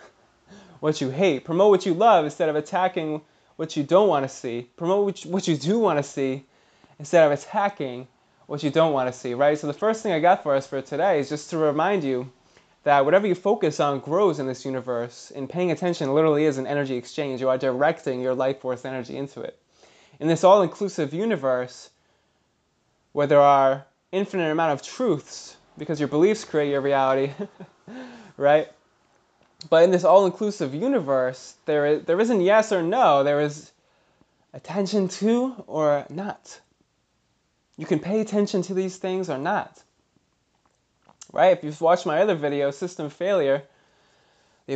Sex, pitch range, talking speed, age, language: male, 140-185 Hz, 175 wpm, 20-39, English